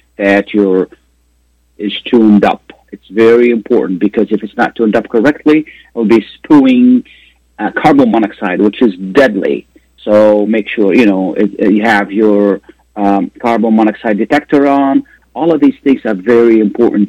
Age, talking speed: 40-59, 160 wpm